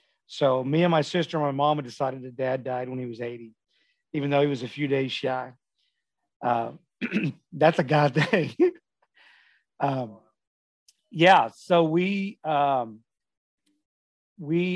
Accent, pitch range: American, 130-155 Hz